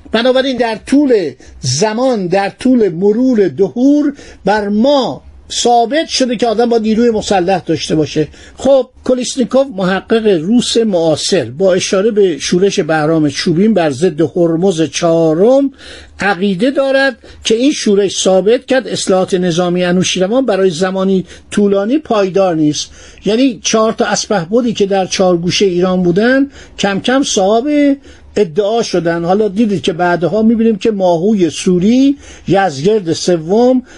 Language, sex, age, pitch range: Persian, male, 50-69, 180-230 Hz